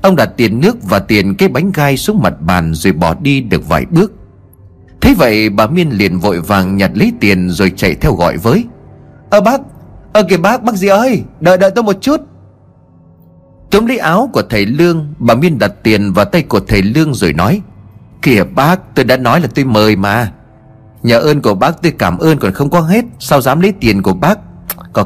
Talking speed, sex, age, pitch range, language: 220 wpm, male, 30-49, 100-160 Hz, Vietnamese